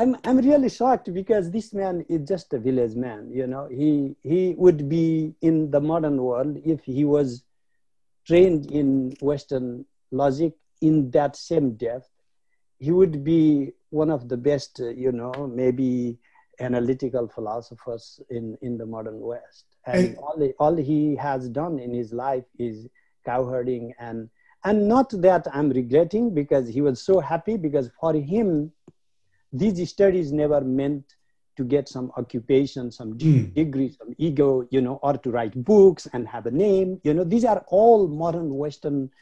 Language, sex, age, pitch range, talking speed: English, male, 60-79, 125-165 Hz, 160 wpm